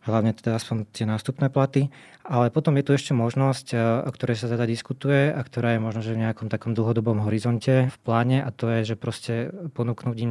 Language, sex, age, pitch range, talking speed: Slovak, male, 20-39, 115-135 Hz, 205 wpm